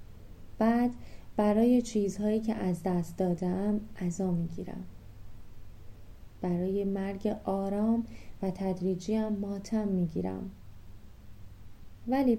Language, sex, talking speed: Persian, female, 80 wpm